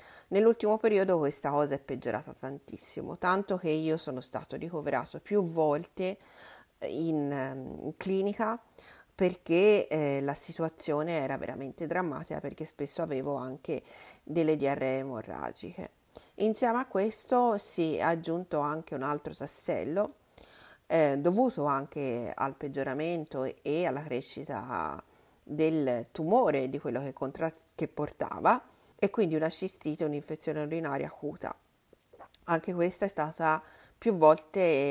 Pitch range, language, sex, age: 140-185 Hz, Italian, female, 40-59